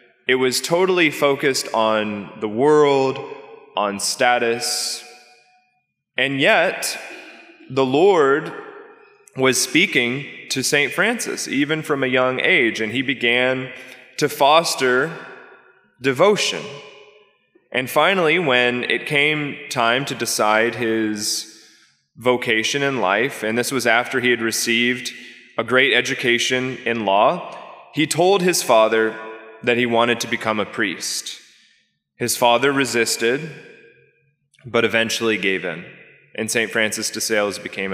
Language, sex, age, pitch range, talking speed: English, male, 20-39, 115-145 Hz, 120 wpm